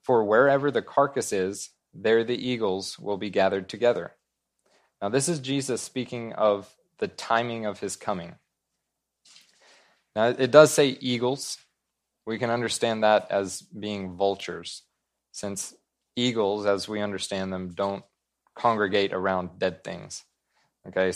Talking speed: 135 wpm